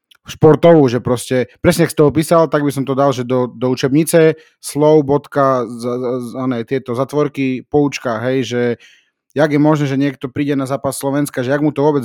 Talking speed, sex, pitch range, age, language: 185 wpm, male, 120-145 Hz, 30-49, Slovak